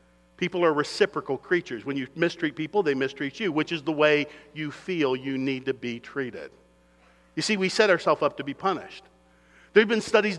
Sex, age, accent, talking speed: male, 50-69, American, 200 wpm